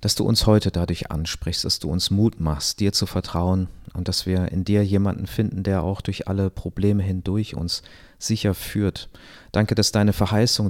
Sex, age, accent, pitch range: male, 30-49, German, 85-100 Hz